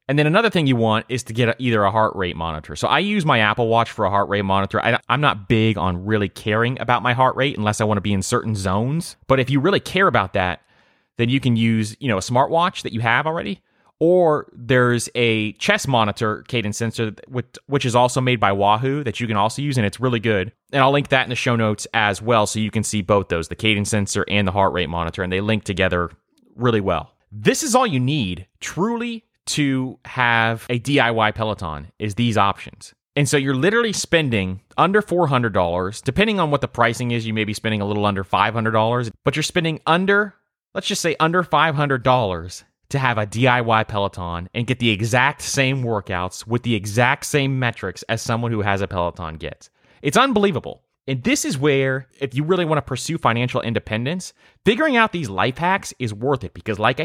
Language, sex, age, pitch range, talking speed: English, male, 30-49, 105-140 Hz, 220 wpm